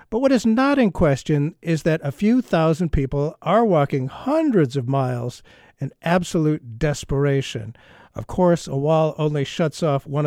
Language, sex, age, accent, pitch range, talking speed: English, male, 50-69, American, 135-195 Hz, 165 wpm